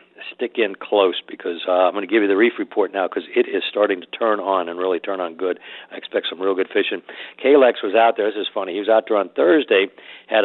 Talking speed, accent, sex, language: 265 wpm, American, male, English